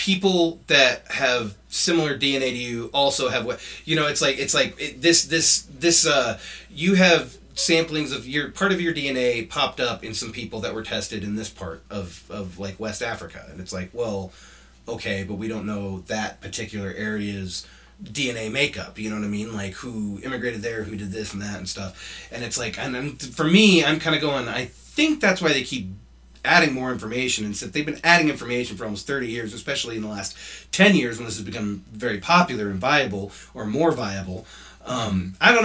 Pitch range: 100-145 Hz